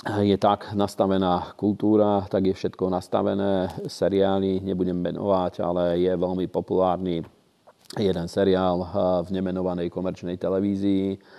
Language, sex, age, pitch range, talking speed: Slovak, male, 40-59, 90-95 Hz, 110 wpm